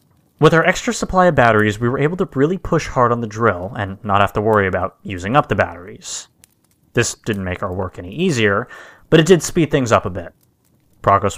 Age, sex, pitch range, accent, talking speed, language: 30-49, male, 95-140 Hz, American, 220 wpm, English